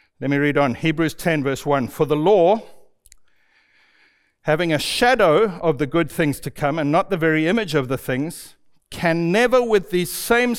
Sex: male